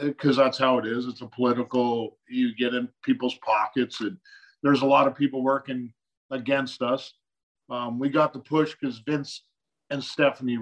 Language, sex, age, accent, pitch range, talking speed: English, male, 50-69, American, 125-155 Hz, 175 wpm